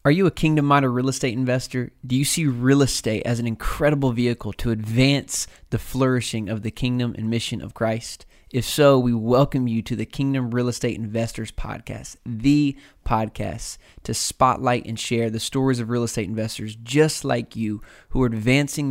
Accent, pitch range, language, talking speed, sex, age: American, 105-125 Hz, English, 180 wpm, male, 20-39